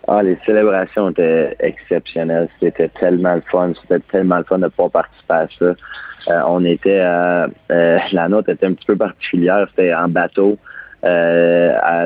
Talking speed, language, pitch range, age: 165 wpm, French, 85-95 Hz, 20-39